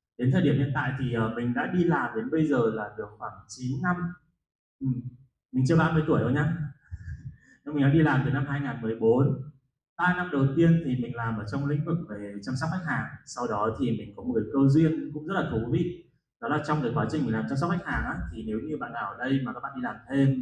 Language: Vietnamese